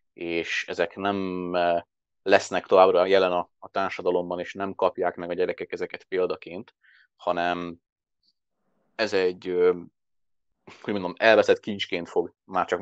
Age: 30-49